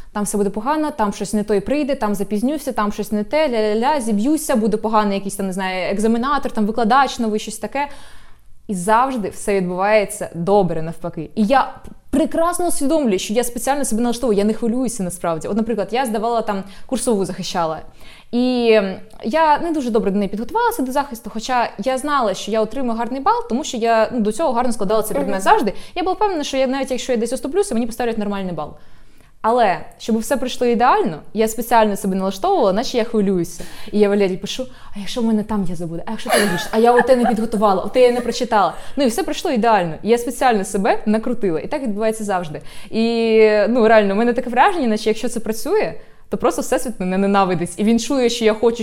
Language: Ukrainian